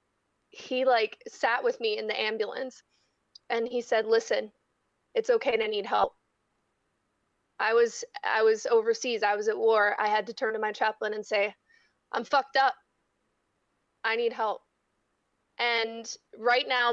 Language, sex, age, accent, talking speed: English, female, 20-39, American, 155 wpm